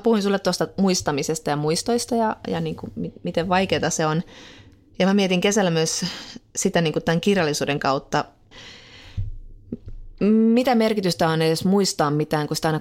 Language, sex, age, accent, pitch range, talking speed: Finnish, female, 30-49, native, 140-200 Hz, 165 wpm